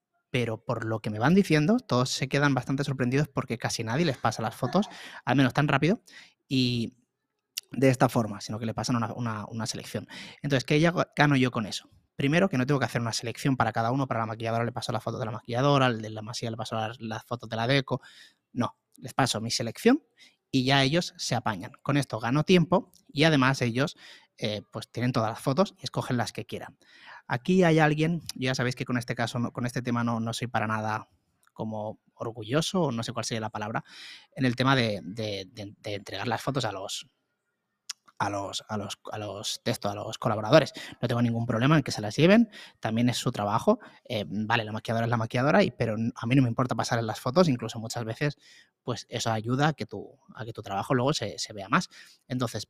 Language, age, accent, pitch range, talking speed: Spanish, 30-49, Spanish, 110-140 Hz, 225 wpm